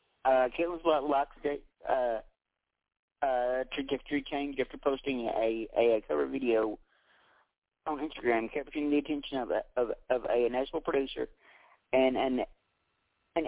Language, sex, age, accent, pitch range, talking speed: English, male, 40-59, American, 130-150 Hz, 125 wpm